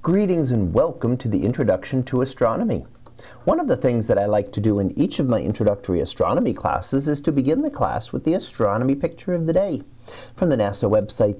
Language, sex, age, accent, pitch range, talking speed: English, male, 40-59, American, 100-140 Hz, 210 wpm